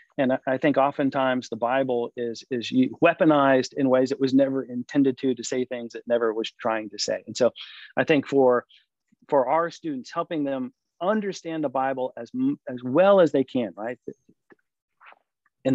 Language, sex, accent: English, male, American